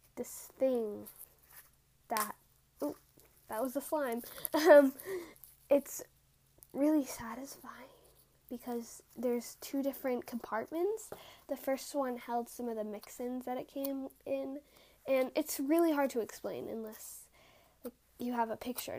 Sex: female